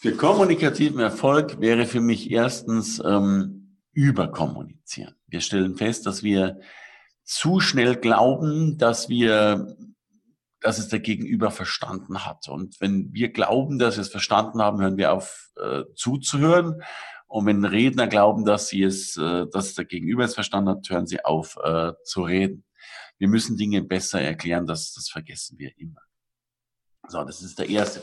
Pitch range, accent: 100-125 Hz, German